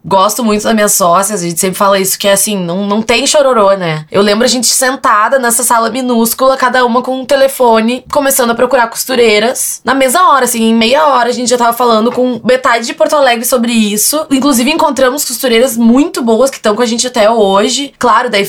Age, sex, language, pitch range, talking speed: 20-39, female, Portuguese, 200-250 Hz, 220 wpm